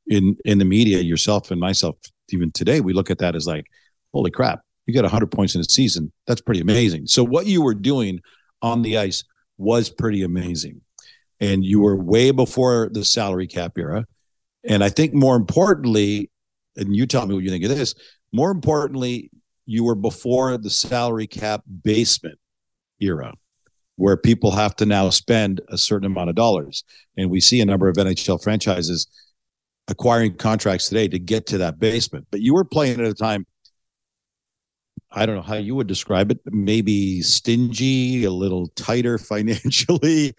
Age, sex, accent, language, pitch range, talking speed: 50-69, male, American, English, 100-140 Hz, 175 wpm